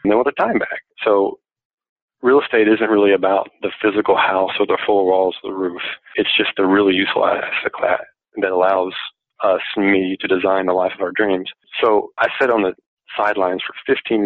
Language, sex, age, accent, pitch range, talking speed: English, male, 40-59, American, 95-110 Hz, 200 wpm